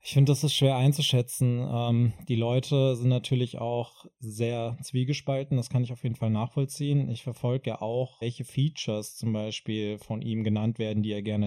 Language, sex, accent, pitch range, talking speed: German, male, German, 115-135 Hz, 190 wpm